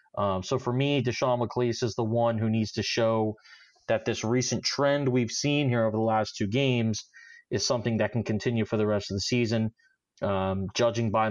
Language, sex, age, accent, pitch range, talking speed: English, male, 30-49, American, 110-130 Hz, 205 wpm